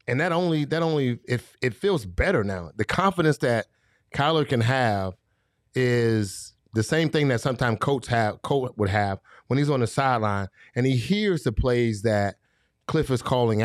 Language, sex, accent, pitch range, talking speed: English, male, American, 105-130 Hz, 185 wpm